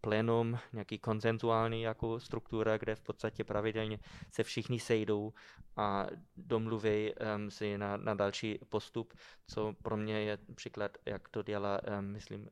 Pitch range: 110-125 Hz